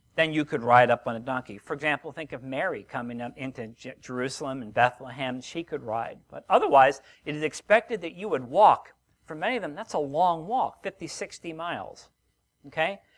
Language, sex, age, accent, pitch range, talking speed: English, male, 50-69, American, 145-200 Hz, 195 wpm